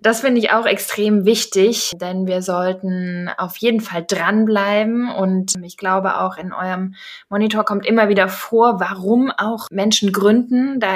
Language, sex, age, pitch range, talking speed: German, female, 20-39, 180-205 Hz, 160 wpm